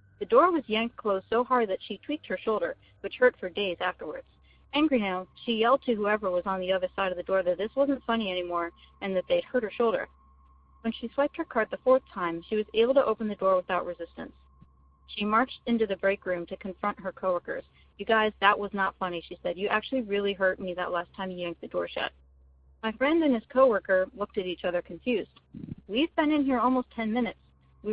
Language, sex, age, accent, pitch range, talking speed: English, female, 40-59, American, 180-235 Hz, 230 wpm